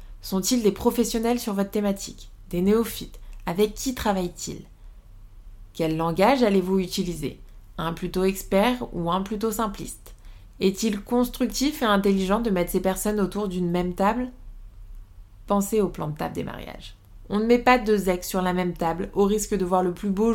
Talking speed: 170 wpm